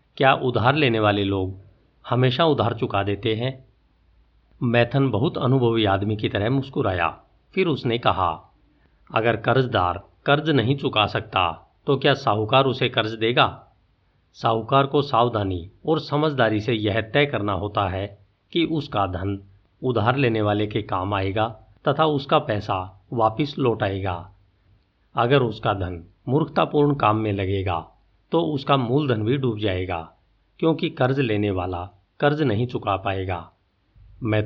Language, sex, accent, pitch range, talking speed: Hindi, male, native, 100-135 Hz, 140 wpm